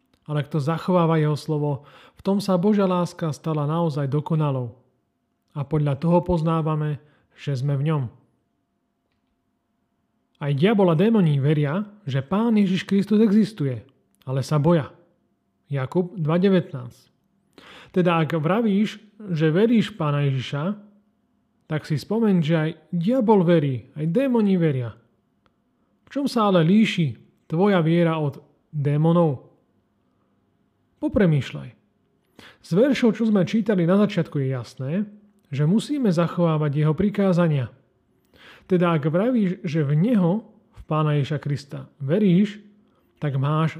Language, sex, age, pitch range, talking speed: Slovak, male, 30-49, 145-200 Hz, 120 wpm